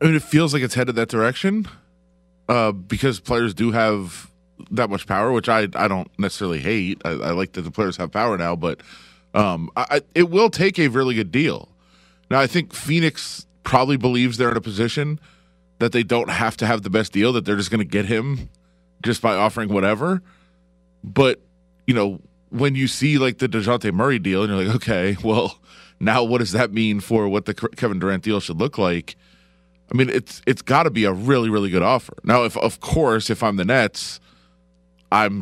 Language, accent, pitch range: English, American, 85-130 Hz